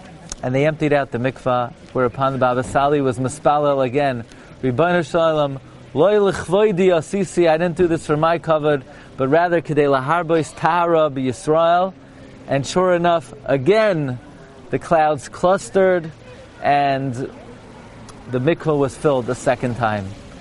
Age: 40-59